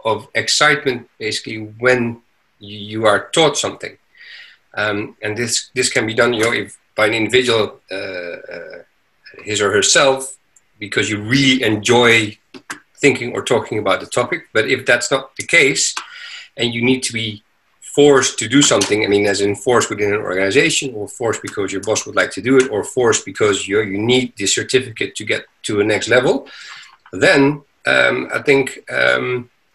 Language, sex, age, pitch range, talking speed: English, male, 40-59, 105-135 Hz, 175 wpm